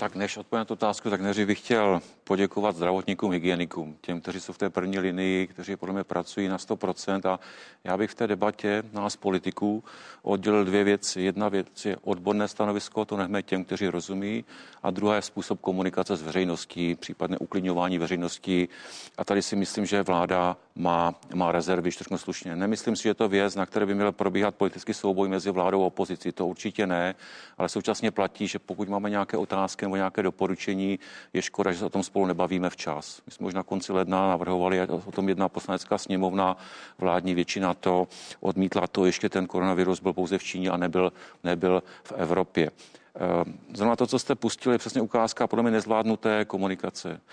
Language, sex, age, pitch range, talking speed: Czech, male, 50-69, 90-105 Hz, 185 wpm